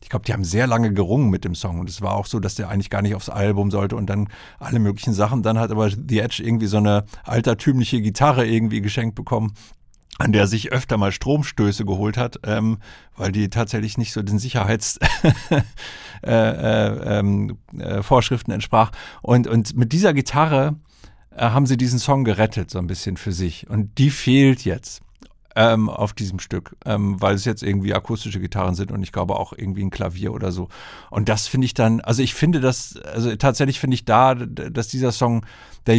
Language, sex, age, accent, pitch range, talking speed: German, male, 50-69, German, 105-130 Hz, 200 wpm